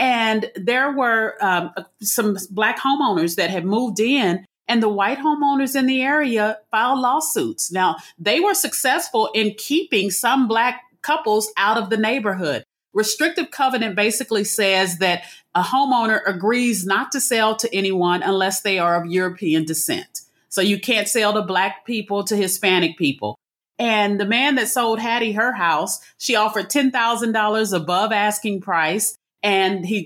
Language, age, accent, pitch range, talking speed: English, 40-59, American, 190-240 Hz, 155 wpm